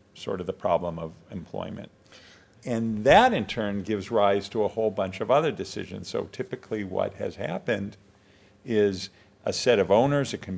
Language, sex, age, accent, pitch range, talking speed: English, male, 50-69, American, 100-120 Hz, 175 wpm